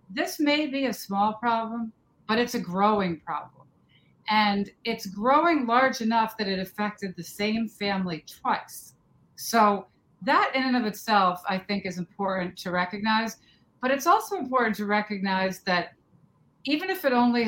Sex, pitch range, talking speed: female, 180-235 Hz, 160 wpm